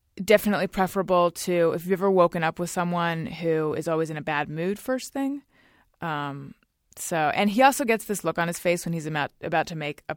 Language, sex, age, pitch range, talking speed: English, female, 20-39, 150-210 Hz, 220 wpm